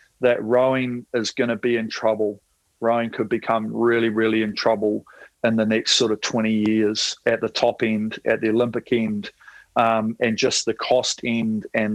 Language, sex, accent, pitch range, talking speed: English, male, Australian, 115-125 Hz, 185 wpm